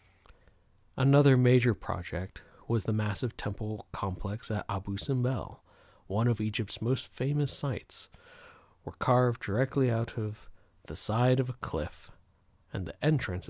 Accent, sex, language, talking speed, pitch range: American, male, English, 135 wpm, 90-125 Hz